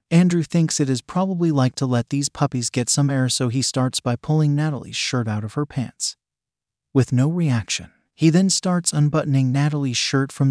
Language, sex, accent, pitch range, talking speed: English, male, American, 120-150 Hz, 195 wpm